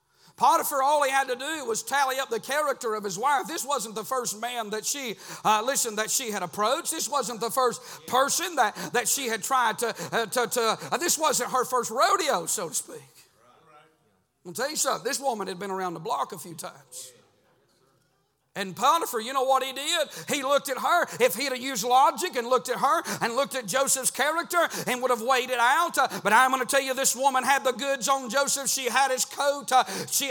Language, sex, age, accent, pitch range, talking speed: English, male, 40-59, American, 240-280 Hz, 220 wpm